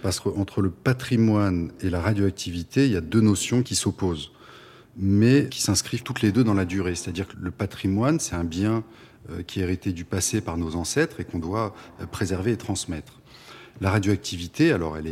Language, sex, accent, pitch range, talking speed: French, male, French, 90-125 Hz, 190 wpm